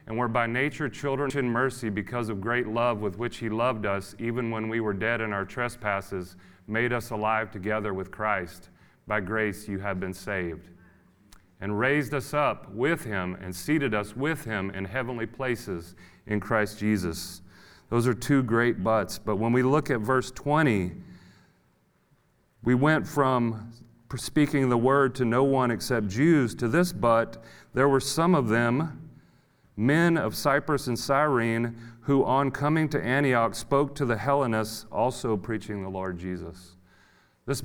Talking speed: 165 wpm